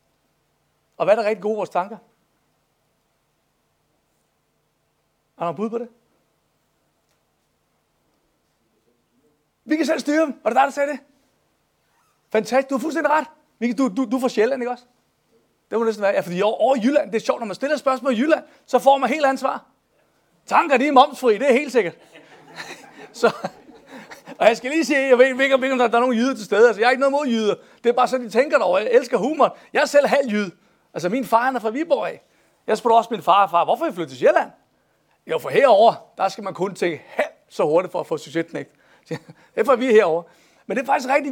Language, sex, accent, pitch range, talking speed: Danish, male, native, 220-285 Hz, 210 wpm